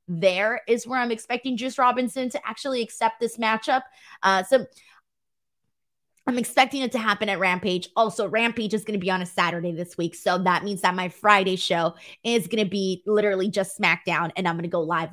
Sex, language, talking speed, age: female, English, 205 wpm, 20-39